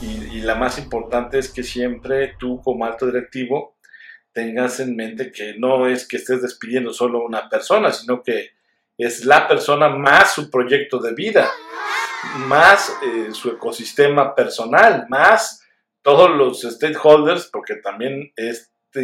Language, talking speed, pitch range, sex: Spanish, 145 wpm, 120-140 Hz, male